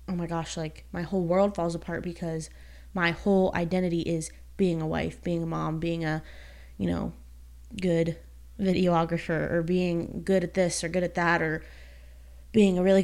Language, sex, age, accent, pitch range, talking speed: English, female, 20-39, American, 155-185 Hz, 180 wpm